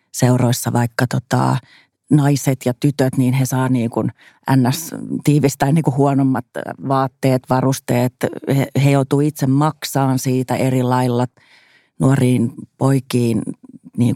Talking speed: 125 wpm